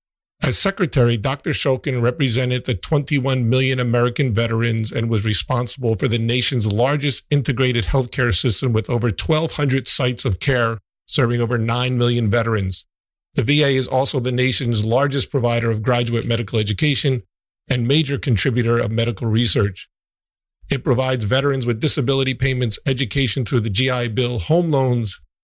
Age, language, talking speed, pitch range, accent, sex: 50-69, English, 145 wpm, 115-135 Hz, American, male